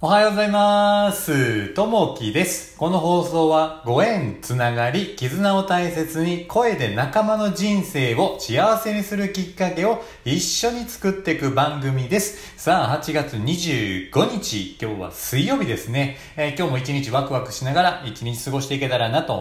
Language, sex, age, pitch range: Japanese, male, 40-59, 105-170 Hz